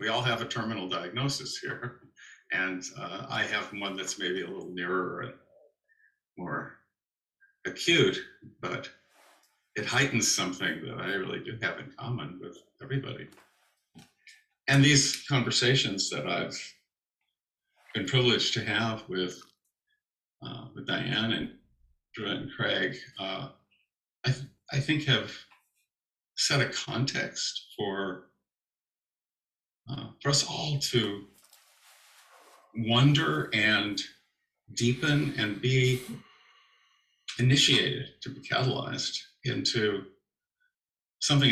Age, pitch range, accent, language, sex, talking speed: 50-69, 110-140 Hz, American, English, male, 110 wpm